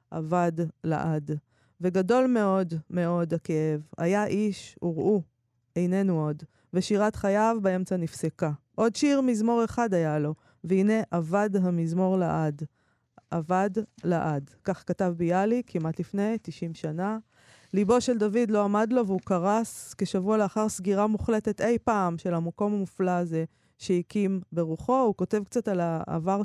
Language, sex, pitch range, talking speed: Hebrew, female, 170-220 Hz, 135 wpm